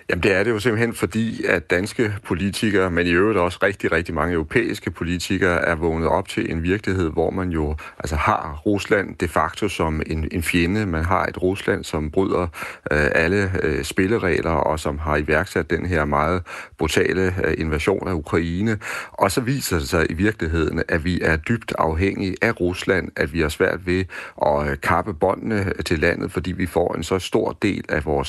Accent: native